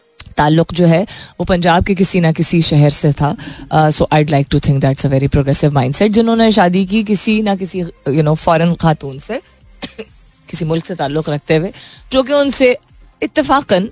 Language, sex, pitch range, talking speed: Hindi, female, 155-210 Hz, 185 wpm